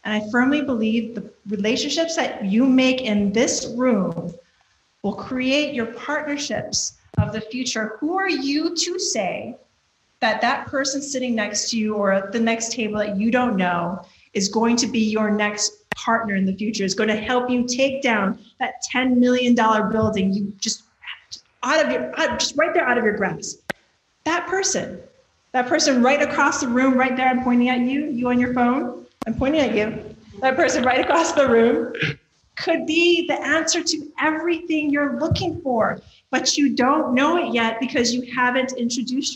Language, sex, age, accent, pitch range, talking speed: English, female, 30-49, American, 220-280 Hz, 180 wpm